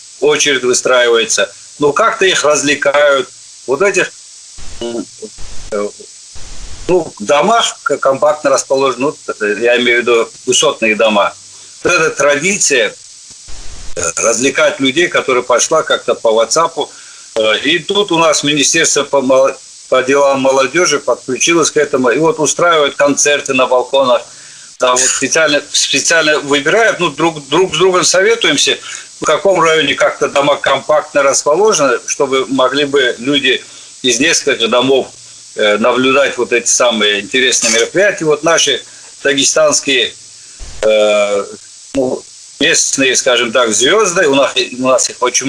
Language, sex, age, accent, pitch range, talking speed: Russian, male, 50-69, native, 125-175 Hz, 120 wpm